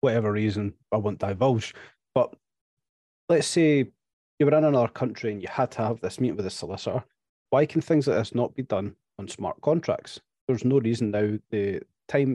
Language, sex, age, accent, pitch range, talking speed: English, male, 30-49, British, 105-135 Hz, 195 wpm